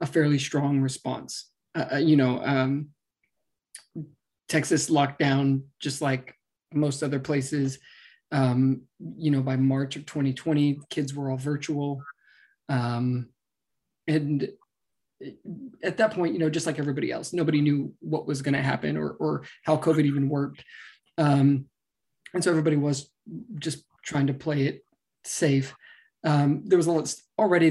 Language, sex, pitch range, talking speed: English, male, 140-155 Hz, 145 wpm